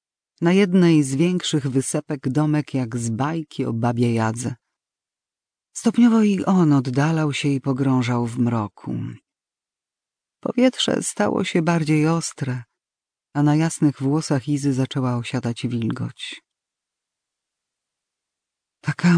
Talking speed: 110 wpm